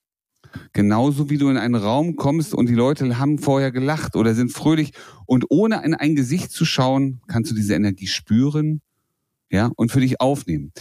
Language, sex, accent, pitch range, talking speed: German, male, German, 110-145 Hz, 185 wpm